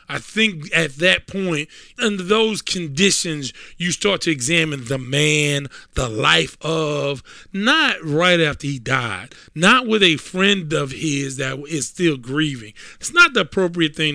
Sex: male